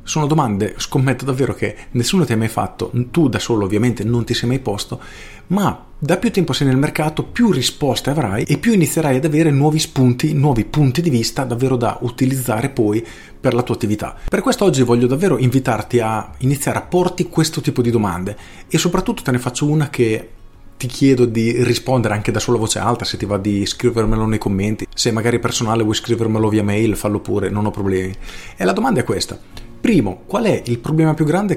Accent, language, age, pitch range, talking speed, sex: native, Italian, 40-59, 110-140 Hz, 205 wpm, male